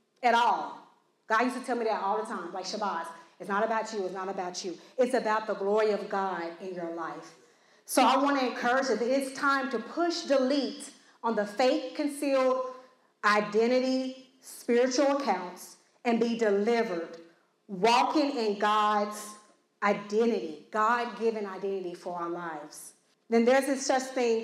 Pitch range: 200-260 Hz